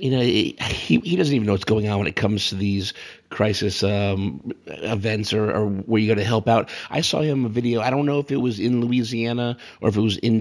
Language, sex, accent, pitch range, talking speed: English, male, American, 105-125 Hz, 255 wpm